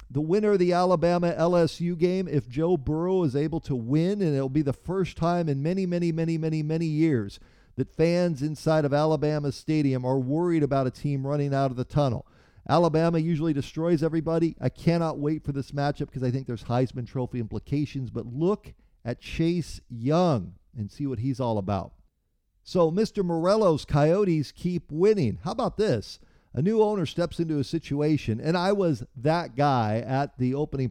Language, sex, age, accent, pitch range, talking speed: English, male, 50-69, American, 130-170 Hz, 185 wpm